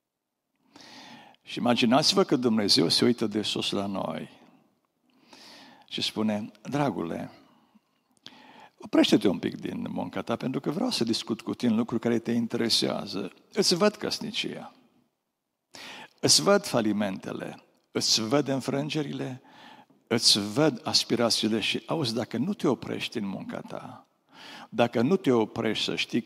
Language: Romanian